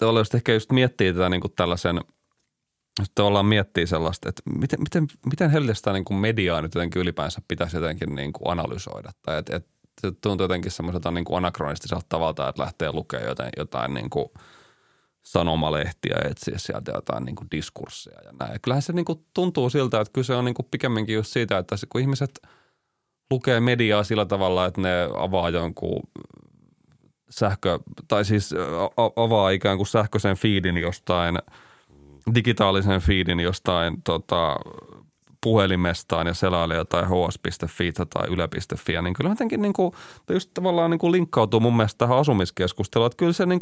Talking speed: 170 wpm